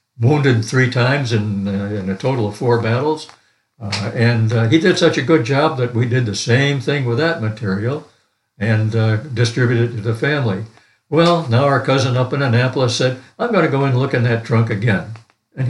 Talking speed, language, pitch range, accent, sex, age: 210 wpm, English, 115-140 Hz, American, male, 60-79